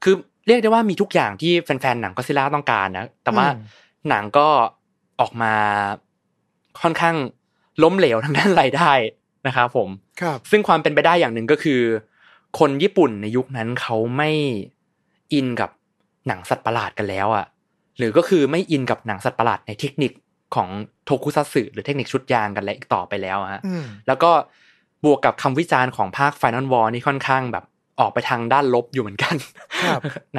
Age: 20-39